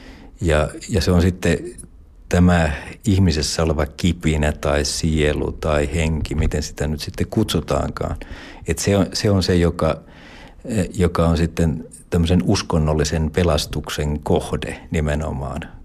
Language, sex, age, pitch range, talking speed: Finnish, male, 60-79, 75-90 Hz, 125 wpm